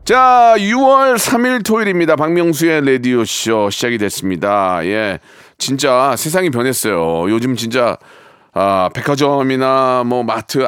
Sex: male